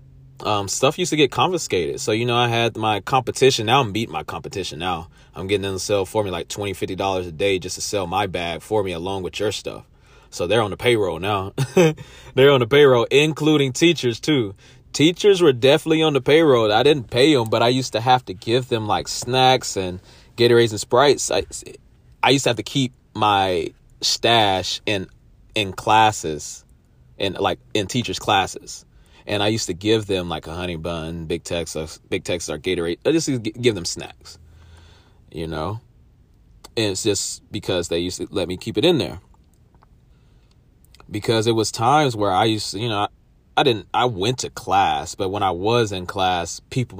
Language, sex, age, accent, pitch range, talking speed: English, male, 30-49, American, 95-125 Hz, 200 wpm